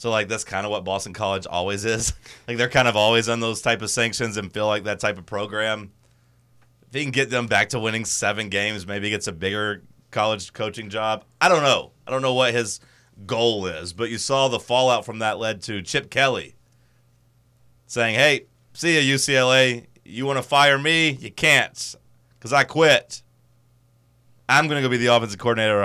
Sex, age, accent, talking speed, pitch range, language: male, 30-49, American, 210 wpm, 105-125 Hz, English